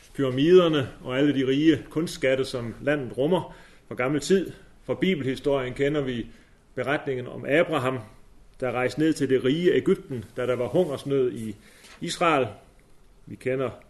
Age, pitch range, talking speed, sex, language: 30-49, 125-155 Hz, 145 wpm, male, Danish